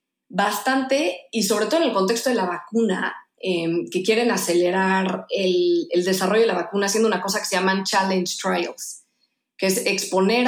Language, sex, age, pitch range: Spanish, female, 20-39, 180-235 Hz